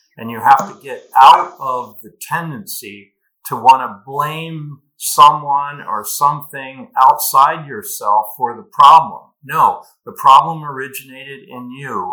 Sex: male